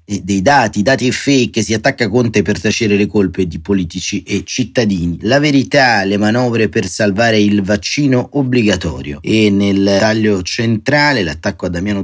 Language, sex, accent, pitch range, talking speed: Italian, male, native, 95-115 Hz, 160 wpm